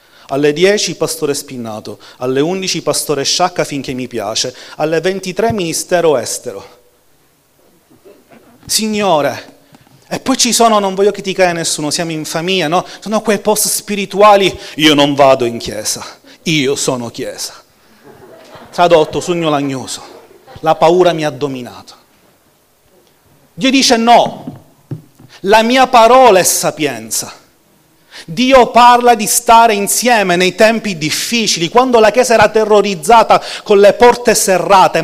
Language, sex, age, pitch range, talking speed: Italian, male, 30-49, 155-225 Hz, 125 wpm